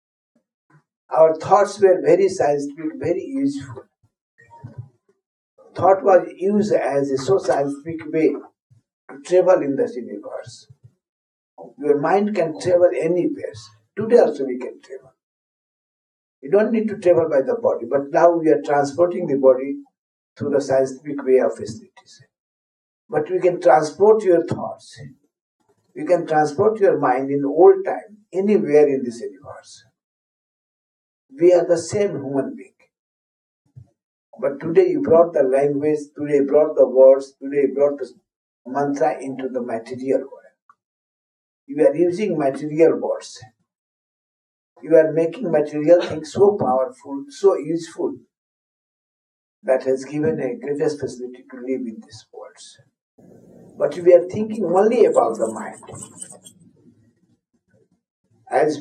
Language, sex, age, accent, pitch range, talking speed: English, male, 60-79, Indian, 140-195 Hz, 130 wpm